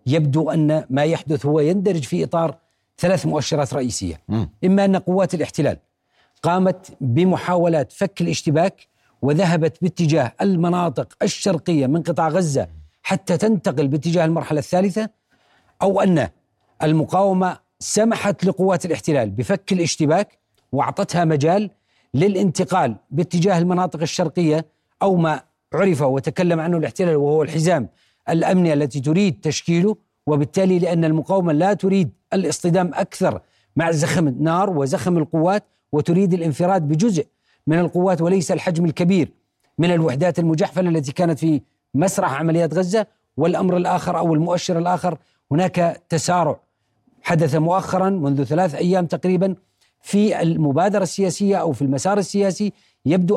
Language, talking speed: Arabic, 120 wpm